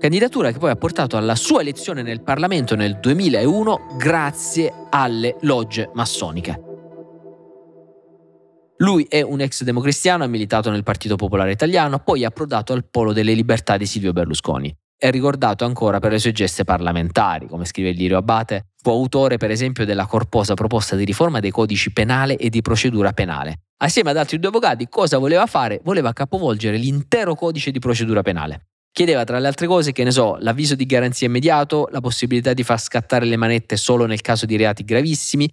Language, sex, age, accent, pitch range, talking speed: Italian, male, 20-39, native, 105-140 Hz, 175 wpm